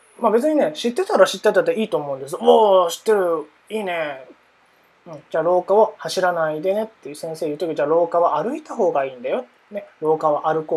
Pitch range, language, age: 160-265 Hz, Japanese, 20-39